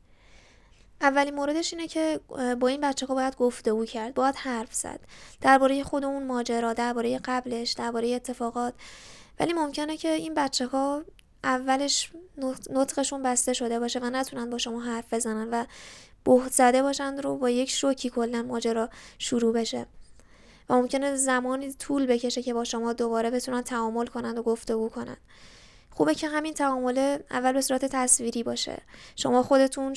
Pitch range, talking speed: 240-270 Hz, 155 wpm